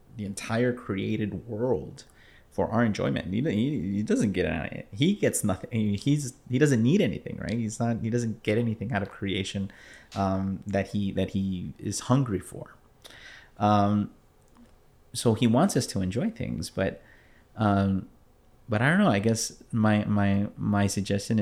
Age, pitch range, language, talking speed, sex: 30-49, 95-115 Hz, English, 165 wpm, male